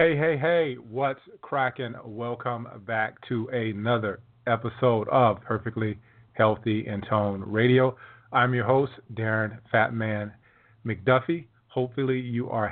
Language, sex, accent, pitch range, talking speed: English, male, American, 110-125 Hz, 120 wpm